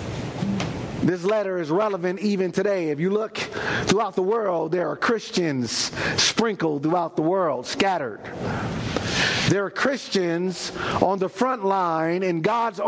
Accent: American